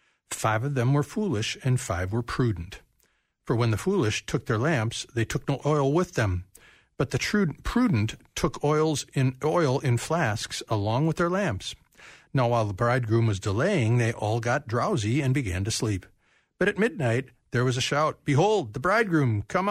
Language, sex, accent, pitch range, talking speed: English, male, American, 110-150 Hz, 185 wpm